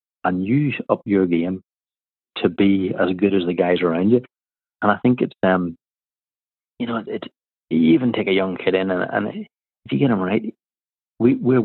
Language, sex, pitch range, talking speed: English, male, 90-100 Hz, 205 wpm